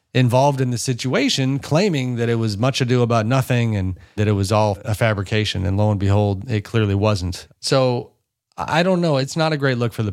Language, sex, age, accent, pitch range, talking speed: English, male, 30-49, American, 110-130 Hz, 220 wpm